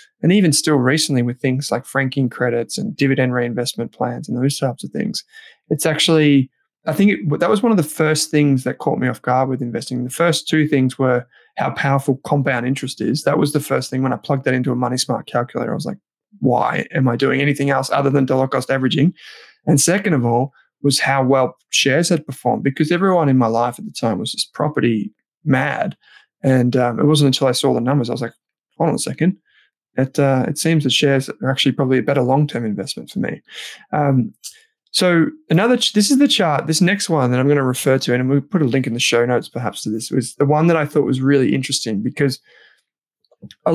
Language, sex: English, male